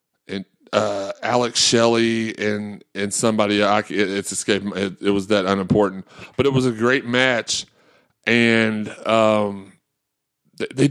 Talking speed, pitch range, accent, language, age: 120 wpm, 105-130 Hz, American, English, 30-49